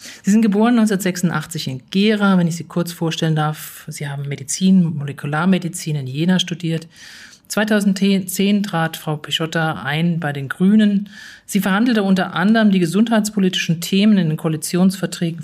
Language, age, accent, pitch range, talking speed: German, 40-59, German, 145-185 Hz, 145 wpm